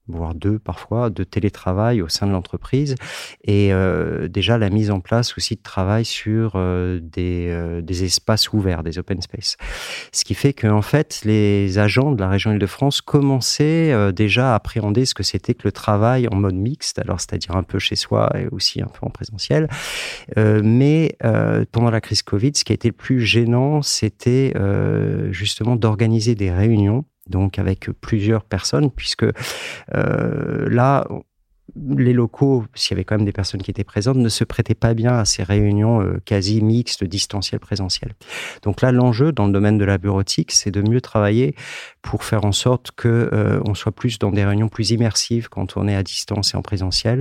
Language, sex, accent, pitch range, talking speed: French, male, French, 100-120 Hz, 195 wpm